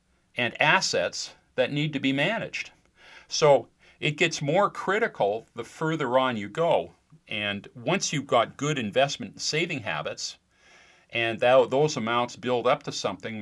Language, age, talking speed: English, 40-59, 150 wpm